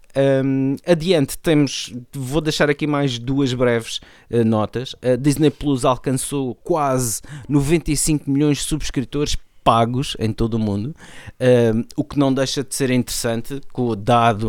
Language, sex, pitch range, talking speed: Portuguese, male, 110-135 Hz, 140 wpm